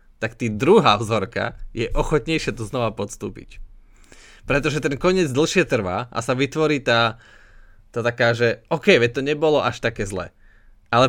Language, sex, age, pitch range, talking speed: Slovak, male, 20-39, 110-145 Hz, 155 wpm